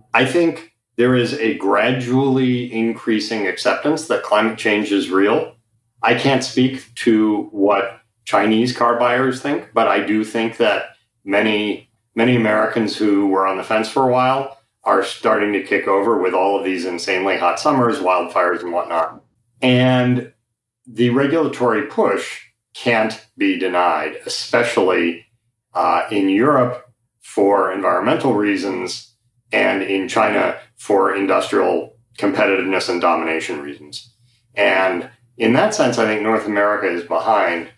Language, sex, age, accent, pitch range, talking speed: English, male, 40-59, American, 105-125 Hz, 135 wpm